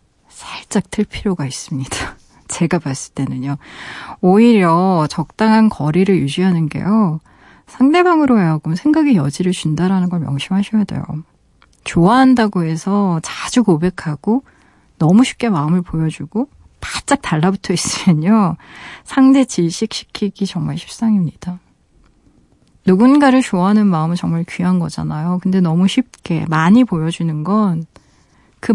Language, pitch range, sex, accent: Korean, 165-215 Hz, female, native